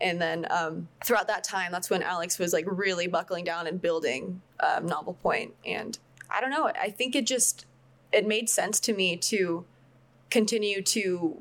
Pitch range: 180-220 Hz